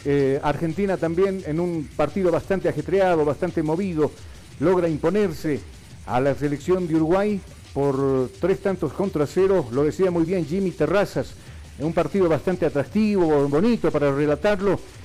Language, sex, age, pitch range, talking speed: Spanish, male, 50-69, 140-180 Hz, 140 wpm